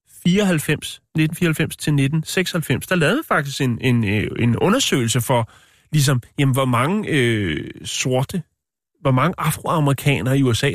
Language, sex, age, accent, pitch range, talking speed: Danish, male, 30-49, native, 120-150 Hz, 130 wpm